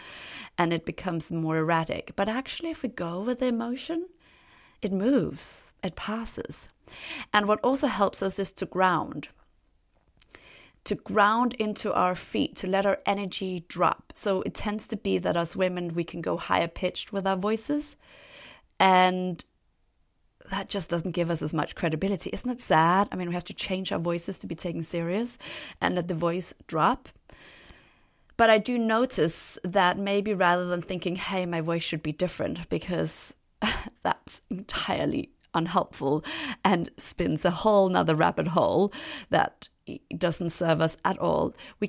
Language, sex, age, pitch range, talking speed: English, female, 30-49, 165-205 Hz, 160 wpm